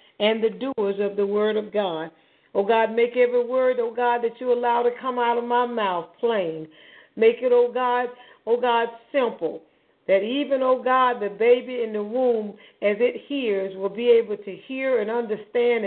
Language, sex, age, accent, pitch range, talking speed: English, female, 50-69, American, 210-255 Hz, 210 wpm